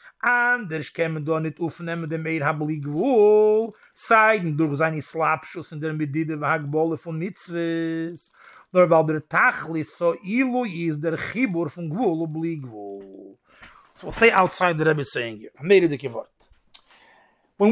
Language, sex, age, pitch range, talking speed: English, male, 40-59, 165-245 Hz, 55 wpm